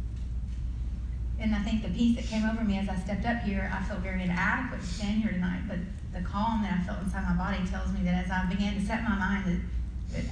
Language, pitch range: English, 180-225 Hz